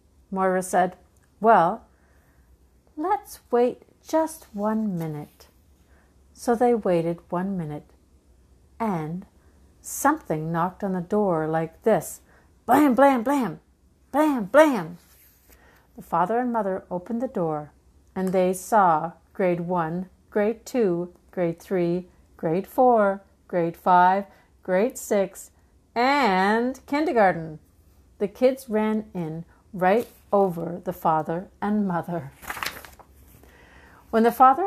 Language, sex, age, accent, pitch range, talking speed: English, female, 60-79, American, 160-215 Hz, 110 wpm